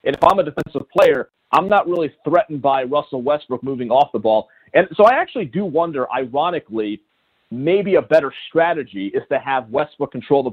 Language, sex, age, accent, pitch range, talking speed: English, male, 40-59, American, 130-170 Hz, 195 wpm